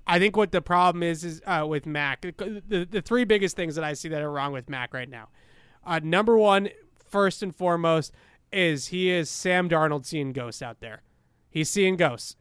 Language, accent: English, American